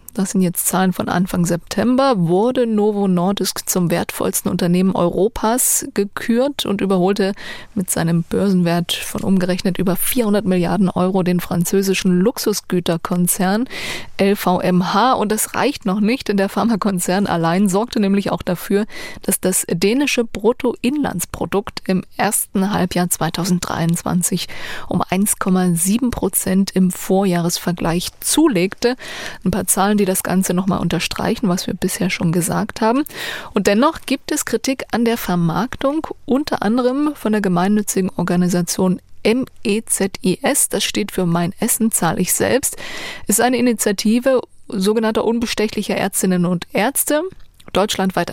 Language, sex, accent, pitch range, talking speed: German, female, German, 180-225 Hz, 130 wpm